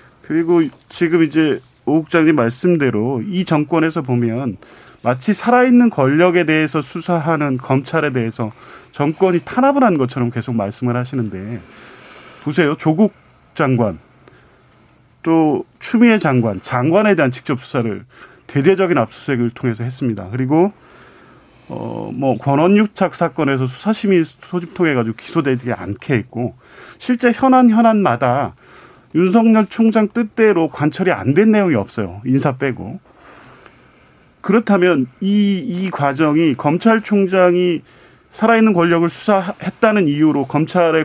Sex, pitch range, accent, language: male, 130-195 Hz, native, Korean